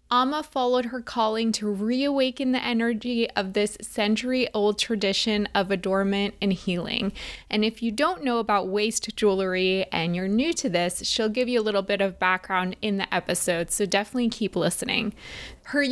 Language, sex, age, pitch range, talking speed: English, female, 20-39, 200-245 Hz, 170 wpm